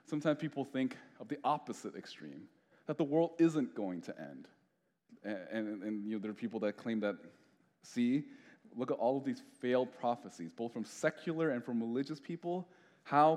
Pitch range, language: 110-145 Hz, English